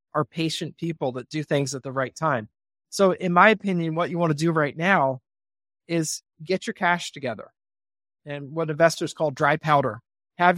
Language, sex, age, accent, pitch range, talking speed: English, male, 30-49, American, 135-170 Hz, 185 wpm